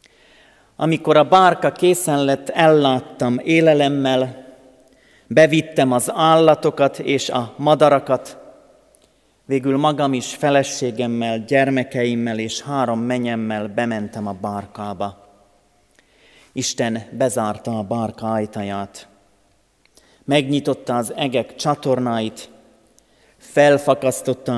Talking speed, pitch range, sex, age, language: 85 wpm, 110-150 Hz, male, 30-49, Hungarian